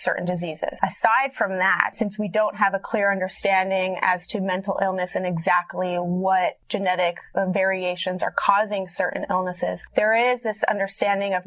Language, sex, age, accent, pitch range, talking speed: English, female, 20-39, American, 185-215 Hz, 155 wpm